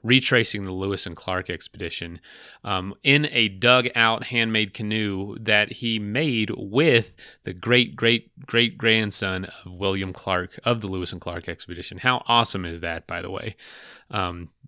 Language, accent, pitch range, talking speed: English, American, 90-115 Hz, 160 wpm